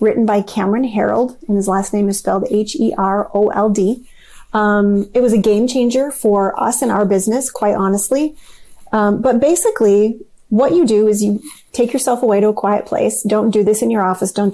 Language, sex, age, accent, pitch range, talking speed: English, female, 30-49, American, 200-250 Hz, 185 wpm